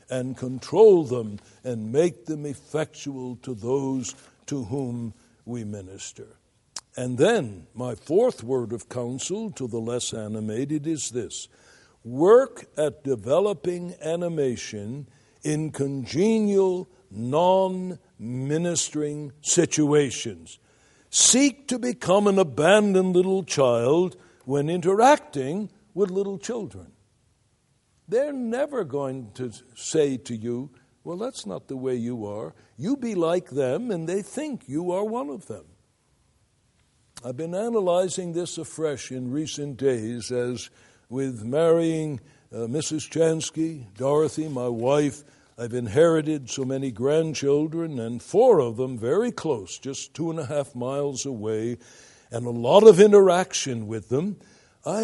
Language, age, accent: English, 60-79, American